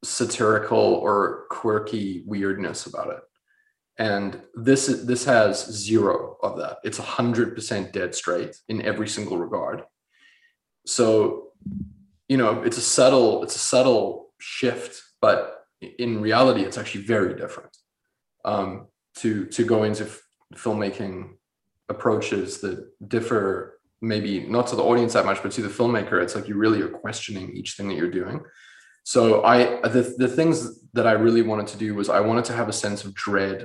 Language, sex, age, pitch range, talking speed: English, male, 20-39, 100-120 Hz, 160 wpm